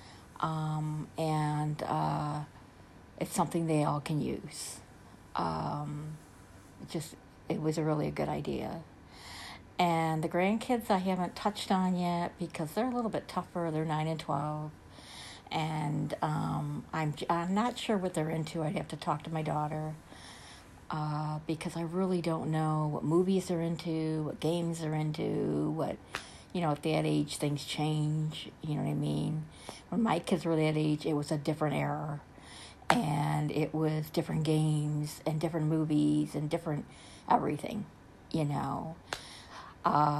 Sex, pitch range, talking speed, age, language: female, 150-170 Hz, 155 wpm, 50-69, English